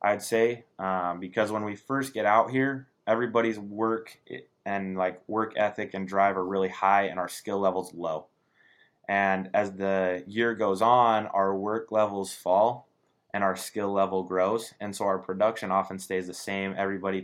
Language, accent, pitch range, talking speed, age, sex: English, American, 95-105 Hz, 175 wpm, 20-39, male